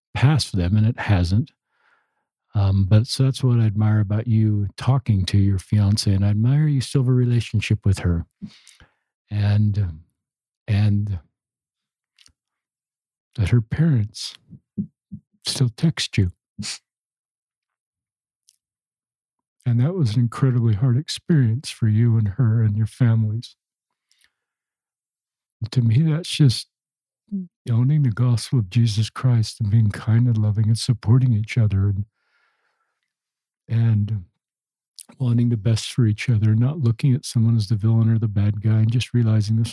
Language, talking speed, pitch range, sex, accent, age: English, 140 wpm, 105-125 Hz, male, American, 60-79